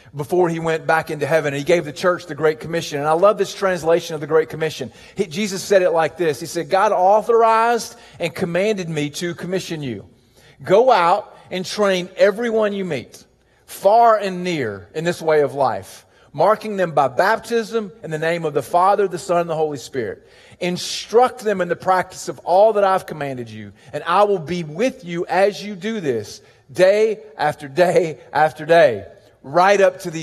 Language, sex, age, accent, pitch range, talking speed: English, male, 40-59, American, 155-195 Hz, 195 wpm